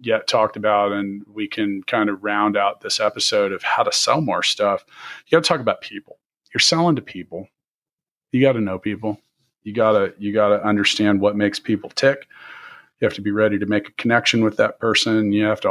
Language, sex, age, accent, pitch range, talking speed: English, male, 40-59, American, 100-115 Hz, 210 wpm